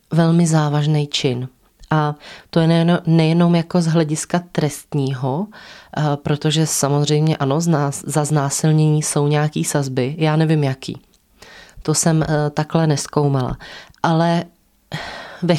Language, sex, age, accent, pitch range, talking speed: Czech, female, 20-39, native, 150-175 Hz, 110 wpm